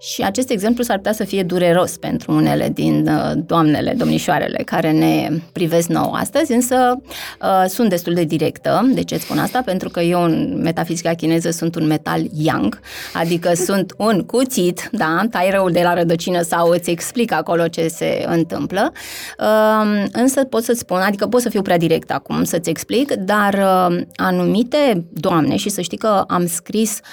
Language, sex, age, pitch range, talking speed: Romanian, female, 20-39, 170-235 Hz, 175 wpm